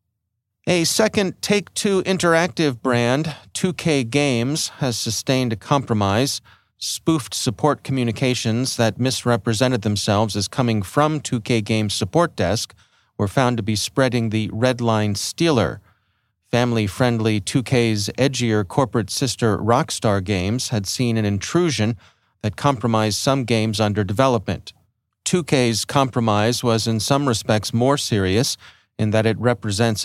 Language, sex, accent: English, male, American